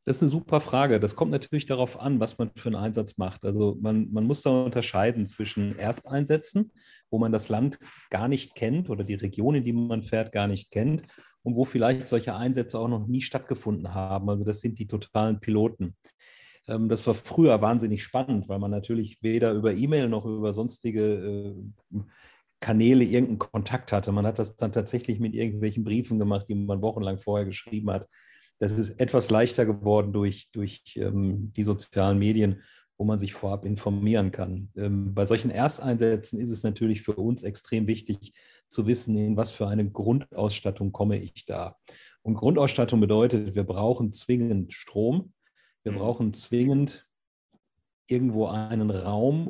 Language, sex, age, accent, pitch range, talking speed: German, male, 40-59, German, 105-120 Hz, 170 wpm